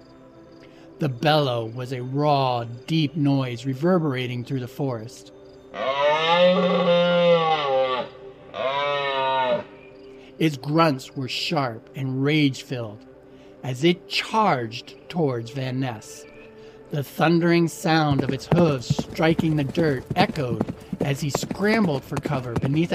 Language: English